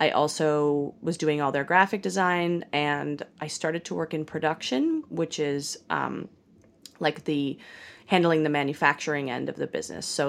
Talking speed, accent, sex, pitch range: 165 wpm, American, female, 145-170 Hz